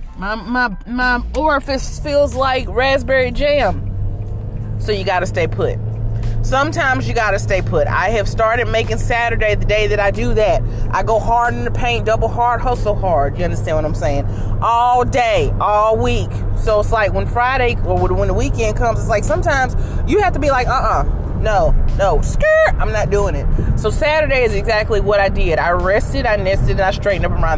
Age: 30-49